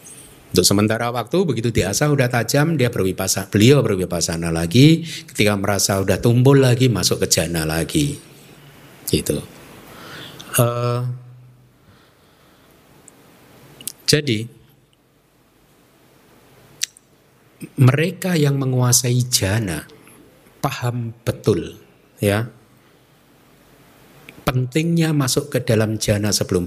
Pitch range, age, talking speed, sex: 95-140 Hz, 50-69, 85 wpm, male